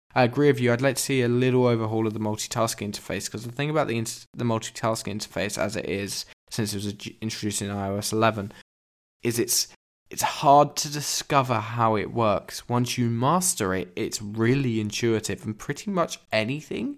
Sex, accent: male, British